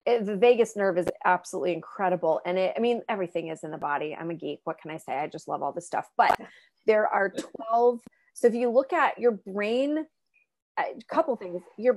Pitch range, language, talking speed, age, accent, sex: 180-225 Hz, English, 215 wpm, 30-49, American, female